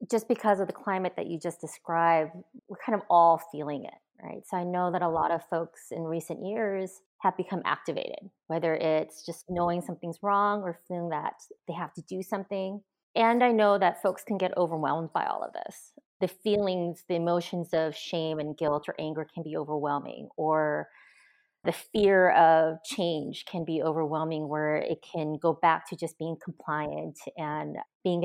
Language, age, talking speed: English, 30-49, 185 wpm